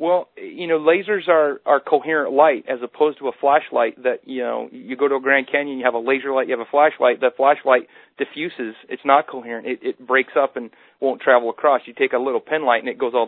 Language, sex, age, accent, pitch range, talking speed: English, male, 40-59, American, 120-140 Hz, 250 wpm